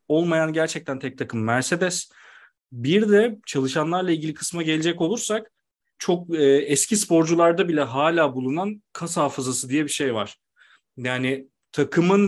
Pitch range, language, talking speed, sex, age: 135-180 Hz, Turkish, 130 wpm, male, 40-59